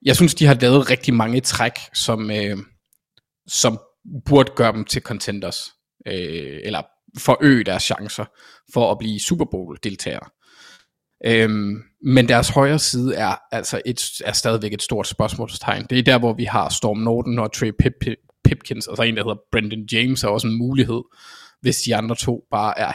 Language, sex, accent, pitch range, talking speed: Danish, male, native, 110-130 Hz, 185 wpm